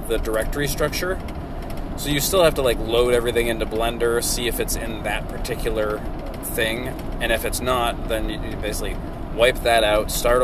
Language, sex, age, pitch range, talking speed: English, male, 30-49, 100-115 Hz, 180 wpm